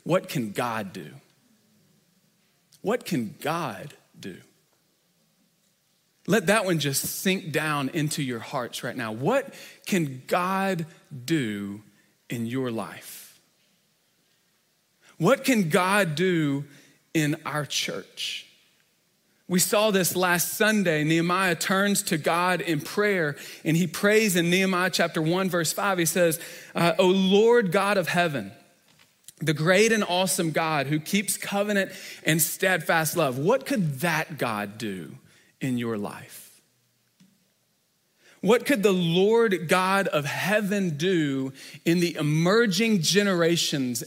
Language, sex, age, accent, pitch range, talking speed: English, male, 40-59, American, 155-195 Hz, 125 wpm